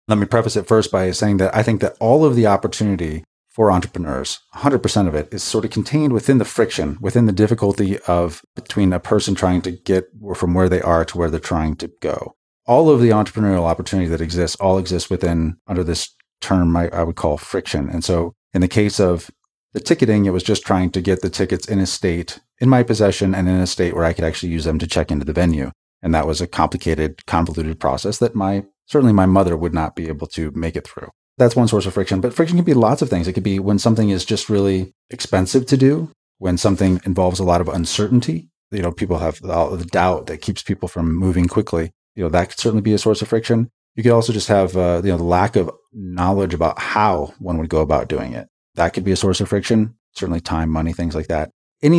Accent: American